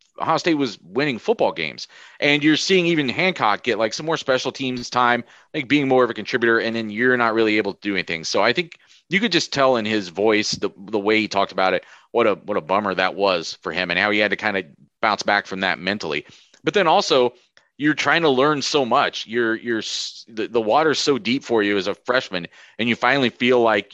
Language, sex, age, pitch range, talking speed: English, male, 30-49, 105-140 Hz, 245 wpm